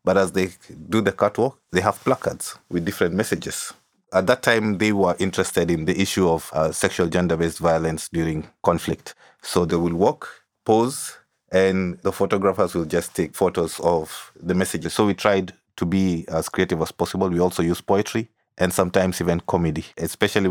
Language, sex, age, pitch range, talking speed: English, male, 30-49, 85-95 Hz, 180 wpm